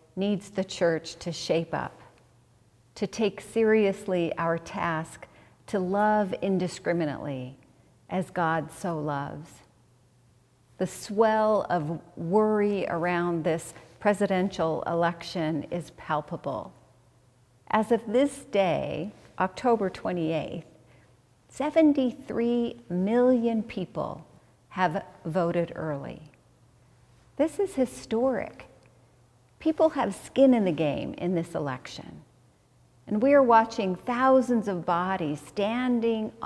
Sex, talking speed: female, 100 wpm